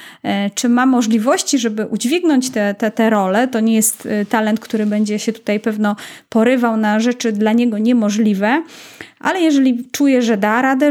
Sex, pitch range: female, 225-270 Hz